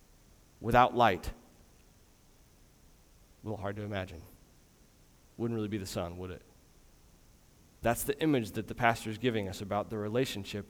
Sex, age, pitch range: male, 30-49, 100-150 Hz